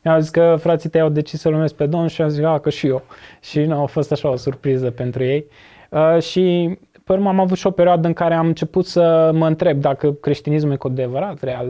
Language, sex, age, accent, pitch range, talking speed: Romanian, male, 20-39, native, 140-170 Hz, 250 wpm